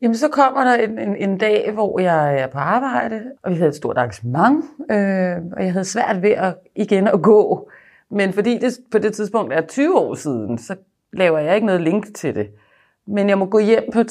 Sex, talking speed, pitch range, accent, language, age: female, 230 wpm, 160-215 Hz, native, Danish, 30-49